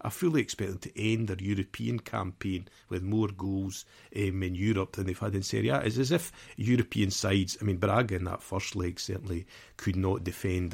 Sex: male